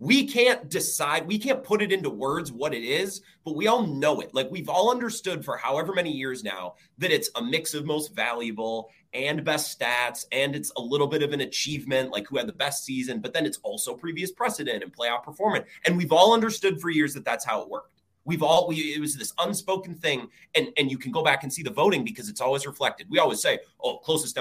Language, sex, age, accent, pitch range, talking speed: English, male, 30-49, American, 140-200 Hz, 235 wpm